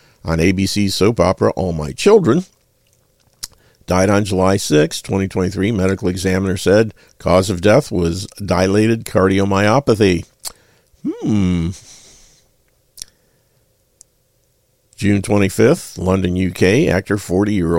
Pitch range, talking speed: 90-115 Hz, 100 wpm